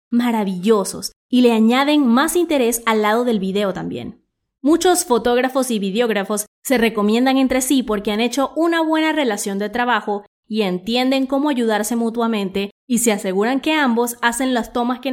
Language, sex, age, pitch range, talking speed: English, female, 20-39, 205-260 Hz, 165 wpm